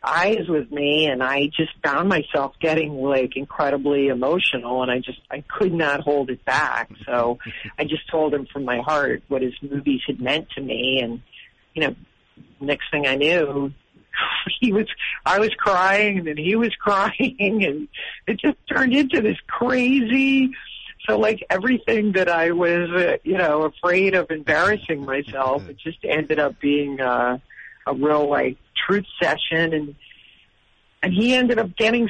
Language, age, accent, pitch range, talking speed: English, 50-69, American, 140-200 Hz, 165 wpm